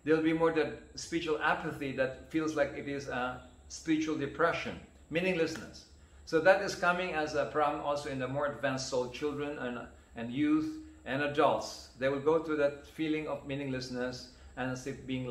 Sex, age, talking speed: male, 50-69, 180 wpm